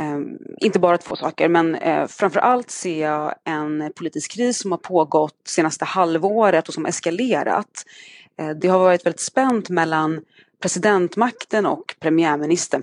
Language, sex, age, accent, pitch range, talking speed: Swedish, female, 30-49, native, 155-190 Hz, 135 wpm